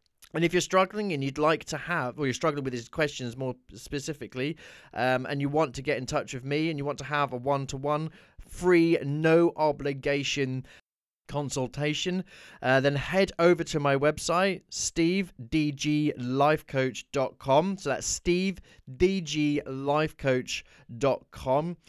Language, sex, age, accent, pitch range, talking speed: English, male, 20-39, British, 125-155 Hz, 140 wpm